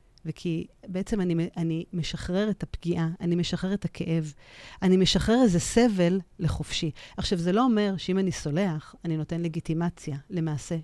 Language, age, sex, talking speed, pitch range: Hebrew, 40-59, female, 150 wpm, 155-185 Hz